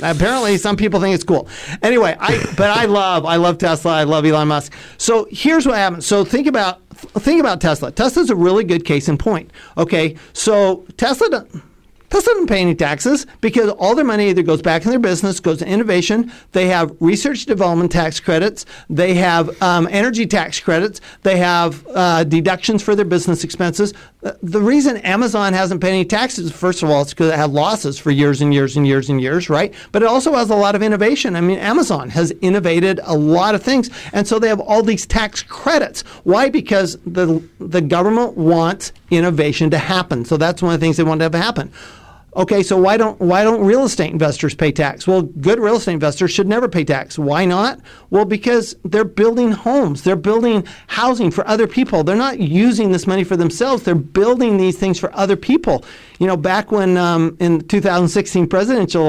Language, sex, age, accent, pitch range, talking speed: English, male, 50-69, American, 165-210 Hz, 205 wpm